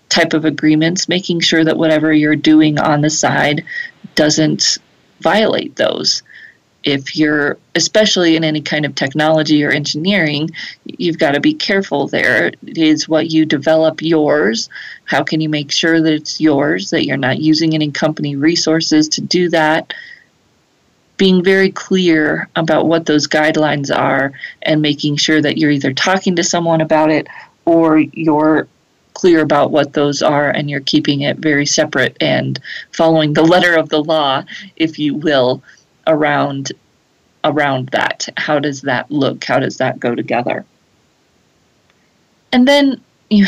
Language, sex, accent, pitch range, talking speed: English, female, American, 150-170 Hz, 155 wpm